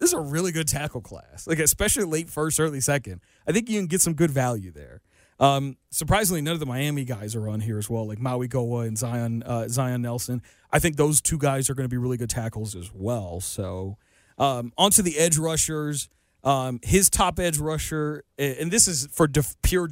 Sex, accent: male, American